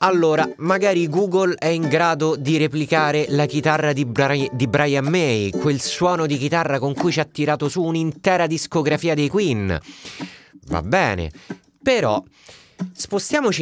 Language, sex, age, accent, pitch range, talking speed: Italian, male, 30-49, native, 110-165 Hz, 140 wpm